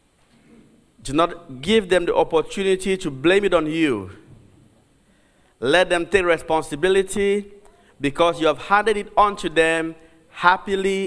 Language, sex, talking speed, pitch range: English, male, 130 wpm, 135-185 Hz